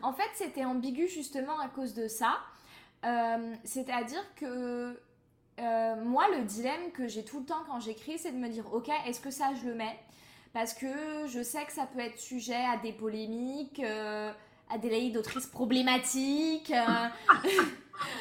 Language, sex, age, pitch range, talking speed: French, female, 20-39, 220-275 Hz, 180 wpm